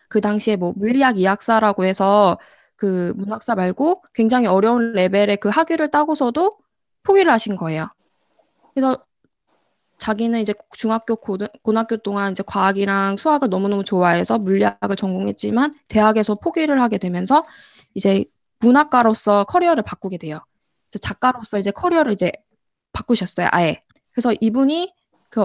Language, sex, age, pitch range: Korean, female, 20-39, 200-270 Hz